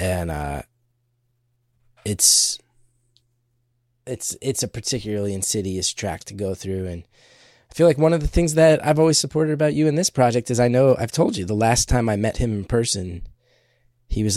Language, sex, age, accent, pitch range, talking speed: English, male, 20-39, American, 100-125 Hz, 190 wpm